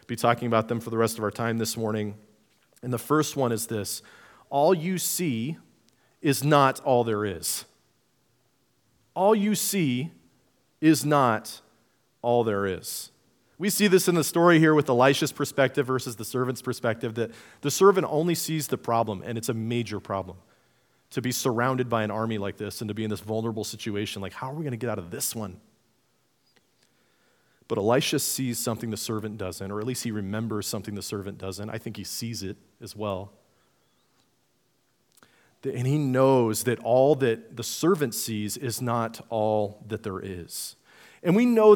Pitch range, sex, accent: 110-135 Hz, male, American